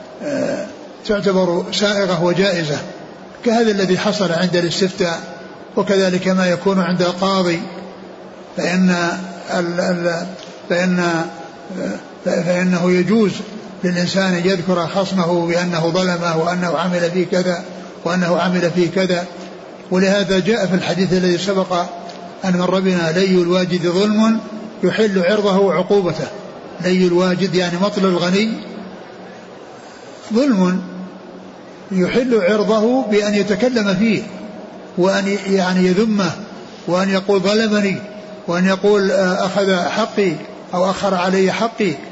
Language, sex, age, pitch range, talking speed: Arabic, male, 60-79, 180-205 Hz, 105 wpm